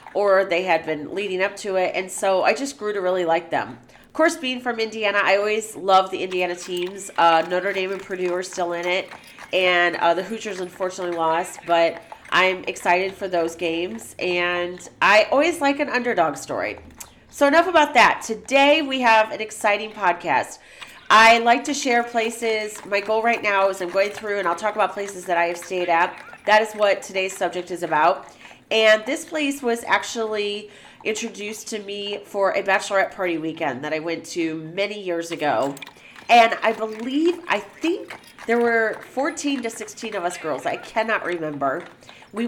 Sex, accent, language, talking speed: female, American, English, 190 wpm